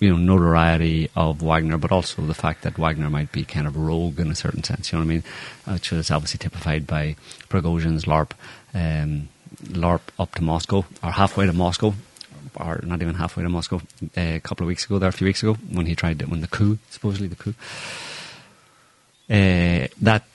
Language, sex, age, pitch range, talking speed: English, male, 30-49, 80-100 Hz, 205 wpm